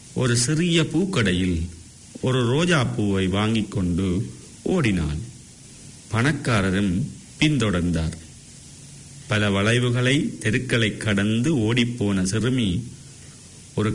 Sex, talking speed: male, 75 wpm